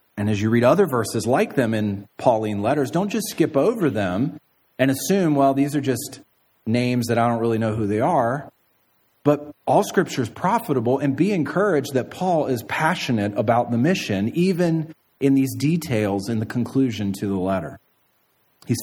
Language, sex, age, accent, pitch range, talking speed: English, male, 40-59, American, 105-145 Hz, 180 wpm